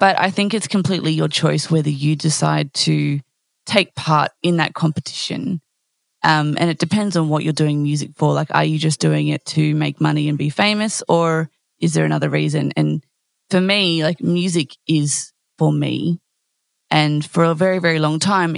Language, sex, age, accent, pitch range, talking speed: English, female, 20-39, Australian, 150-175 Hz, 185 wpm